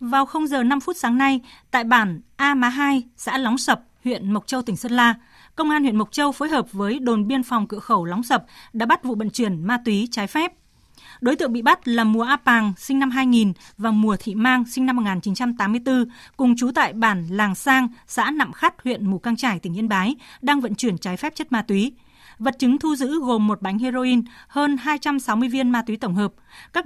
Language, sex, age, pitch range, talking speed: Vietnamese, female, 20-39, 215-265 Hz, 230 wpm